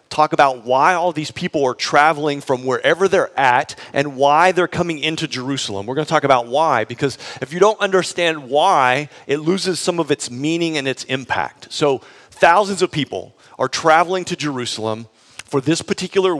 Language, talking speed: English, 185 wpm